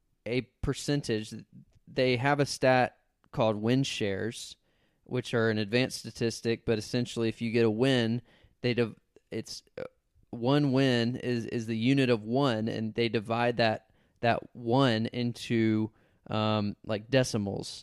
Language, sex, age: English, male, 20-39